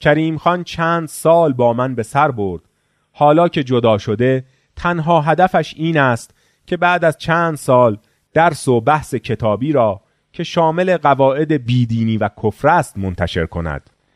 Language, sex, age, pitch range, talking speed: Persian, male, 30-49, 110-155 Hz, 150 wpm